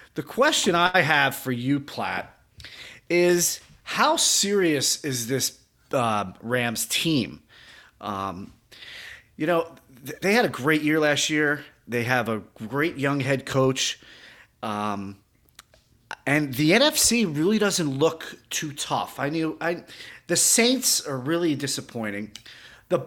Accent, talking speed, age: American, 135 wpm, 30-49